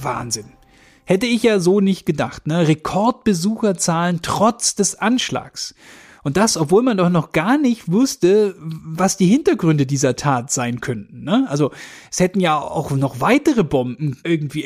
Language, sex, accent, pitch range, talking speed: German, male, German, 145-205 Hz, 155 wpm